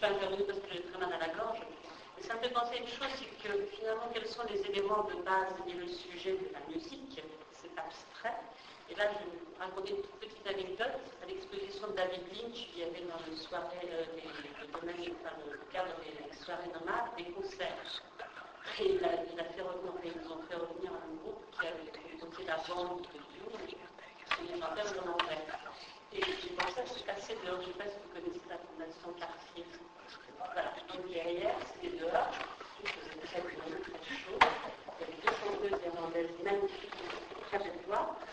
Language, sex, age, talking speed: French, female, 50-69, 170 wpm